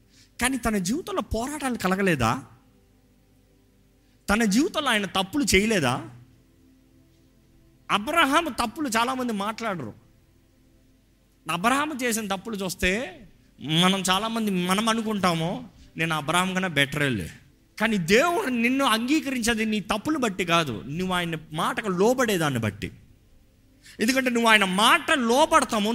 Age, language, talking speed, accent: 30-49, Telugu, 105 wpm, native